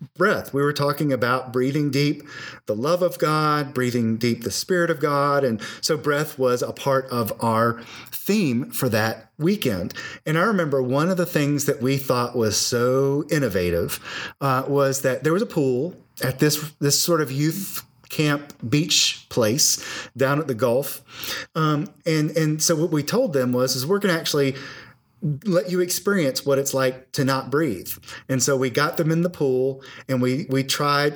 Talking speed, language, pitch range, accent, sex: 185 wpm, English, 130-160 Hz, American, male